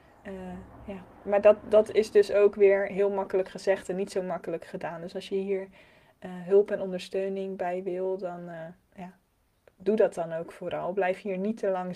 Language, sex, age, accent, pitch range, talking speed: Dutch, female, 20-39, Dutch, 175-205 Hz, 190 wpm